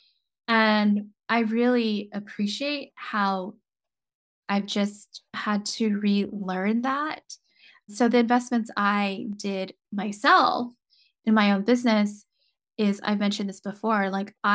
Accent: American